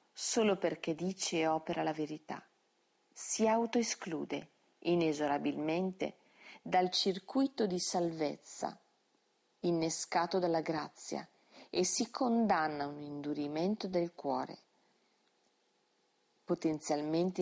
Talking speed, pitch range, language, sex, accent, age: 90 wpm, 150-225 Hz, Italian, female, native, 40-59